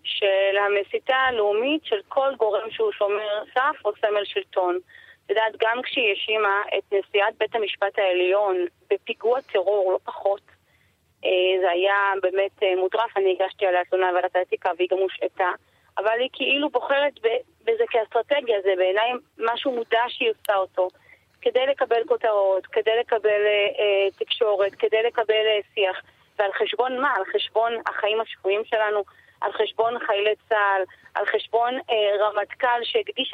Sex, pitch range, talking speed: female, 200-270 Hz, 140 wpm